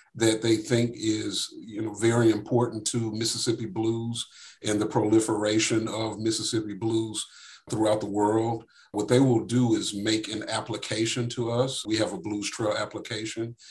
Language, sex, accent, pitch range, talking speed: English, male, American, 110-120 Hz, 160 wpm